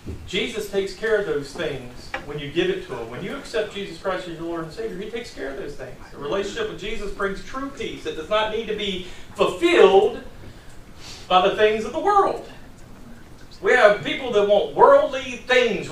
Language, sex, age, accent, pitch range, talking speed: English, male, 40-59, American, 180-250 Hz, 205 wpm